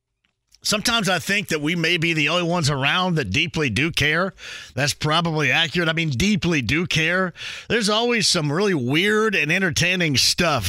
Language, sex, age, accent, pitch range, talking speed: English, male, 50-69, American, 130-185 Hz, 175 wpm